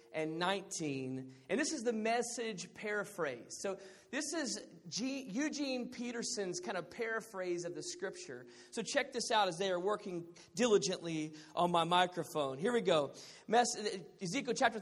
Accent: American